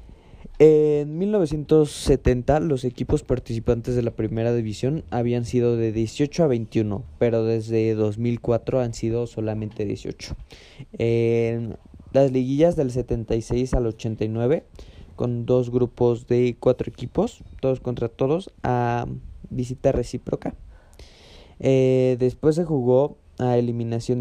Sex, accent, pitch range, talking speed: male, Mexican, 115-135 Hz, 115 wpm